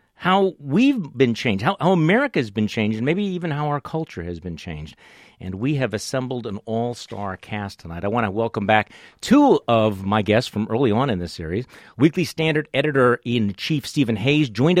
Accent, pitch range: American, 105-150 Hz